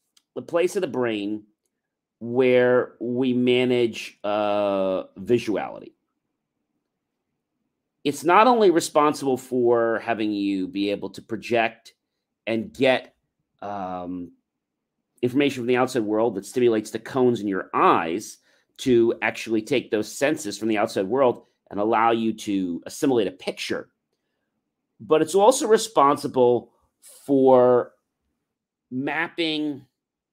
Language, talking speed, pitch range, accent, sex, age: English, 115 wpm, 110-145 Hz, American, male, 40-59